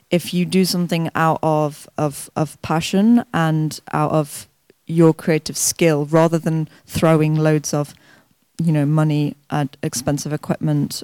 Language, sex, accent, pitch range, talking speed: English, female, British, 155-185 Hz, 140 wpm